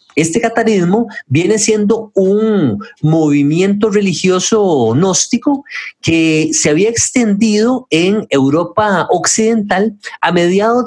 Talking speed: 95 wpm